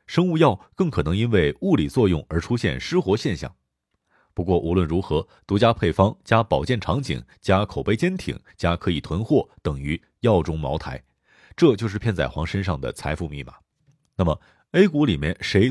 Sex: male